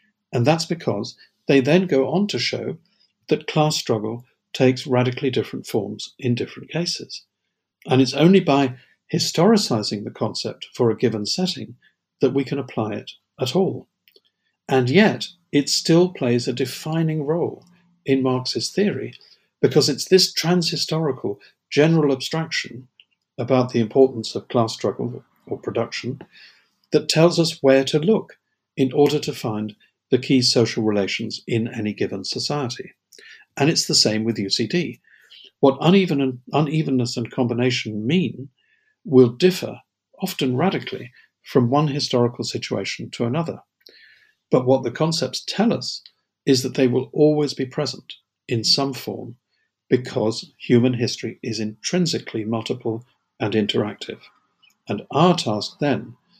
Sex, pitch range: male, 120-160 Hz